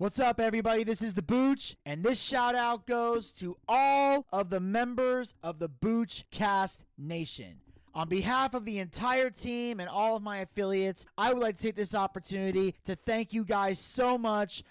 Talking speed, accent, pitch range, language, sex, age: 185 wpm, American, 170-225 Hz, English, male, 30-49